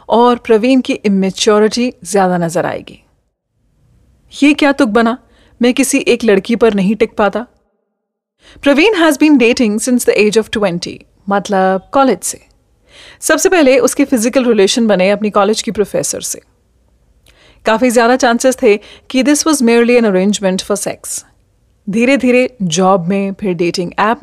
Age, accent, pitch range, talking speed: 30-49, native, 190-250 Hz, 150 wpm